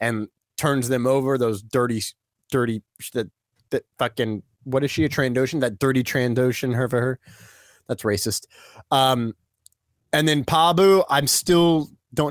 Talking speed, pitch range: 150 wpm, 115-160 Hz